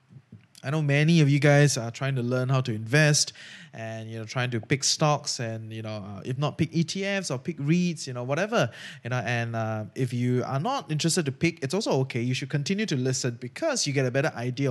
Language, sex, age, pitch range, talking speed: English, male, 20-39, 125-165 Hz, 240 wpm